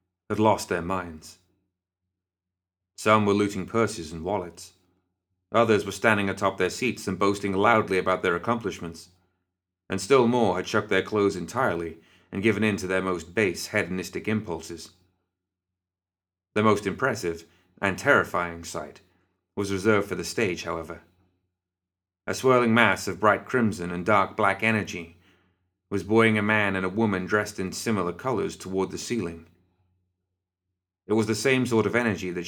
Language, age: English, 30-49